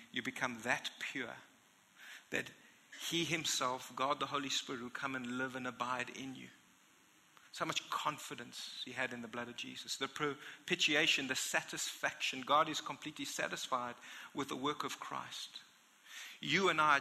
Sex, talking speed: male, 160 wpm